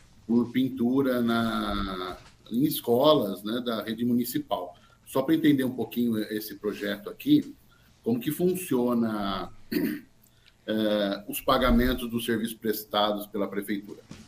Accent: Brazilian